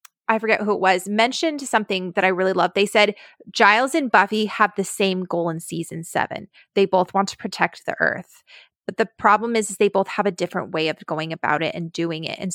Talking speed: 235 wpm